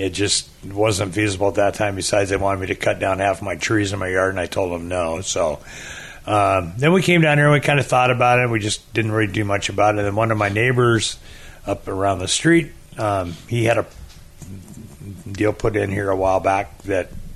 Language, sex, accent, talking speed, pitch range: English, male, American, 240 wpm, 100-125 Hz